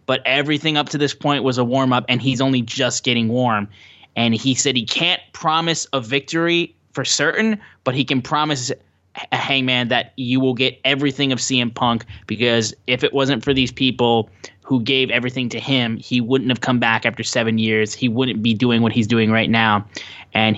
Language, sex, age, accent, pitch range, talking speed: English, male, 10-29, American, 110-130 Hz, 200 wpm